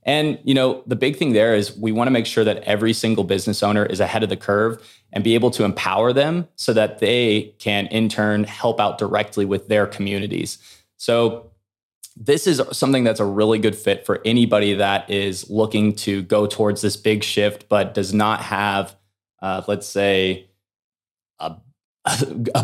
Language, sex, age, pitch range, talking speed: English, male, 20-39, 100-115 Hz, 185 wpm